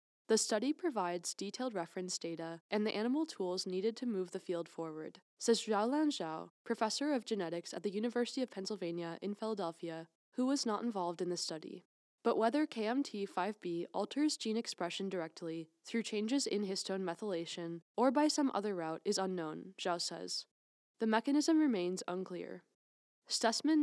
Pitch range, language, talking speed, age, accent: 175-235 Hz, English, 155 wpm, 10-29, American